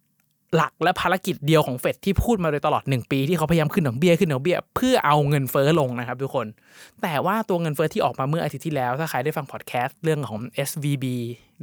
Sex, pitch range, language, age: male, 135-170 Hz, Thai, 20-39